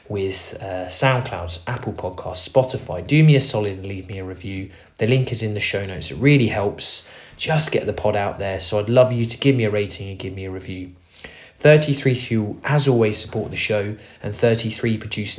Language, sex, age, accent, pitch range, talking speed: English, male, 20-39, British, 100-125 Hz, 215 wpm